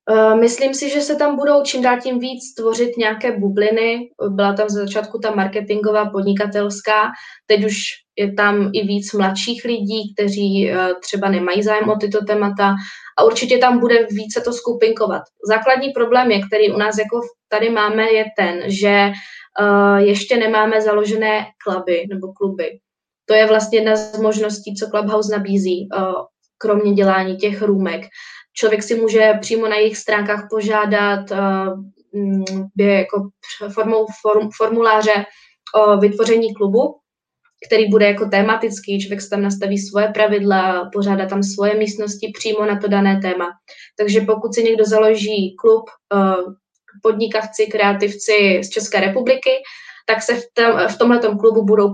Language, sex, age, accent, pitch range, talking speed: Czech, female, 20-39, native, 200-220 Hz, 145 wpm